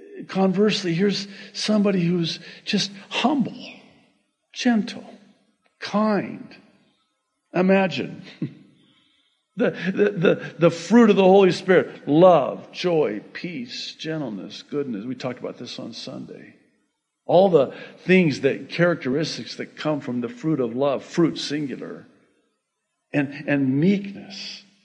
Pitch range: 145-225 Hz